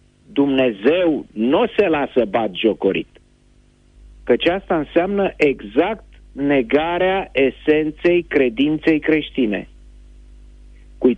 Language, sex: Romanian, male